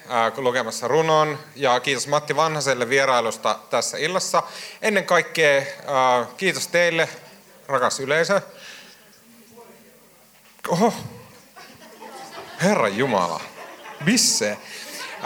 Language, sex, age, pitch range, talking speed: Finnish, male, 40-59, 125-160 Hz, 70 wpm